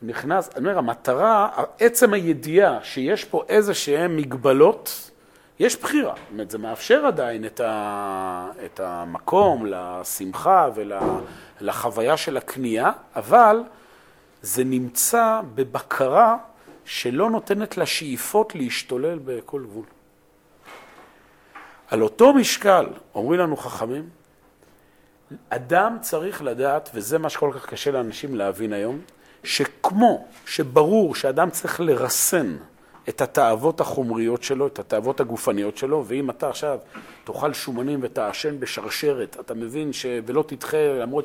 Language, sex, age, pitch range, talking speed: Hebrew, male, 40-59, 115-175 Hz, 115 wpm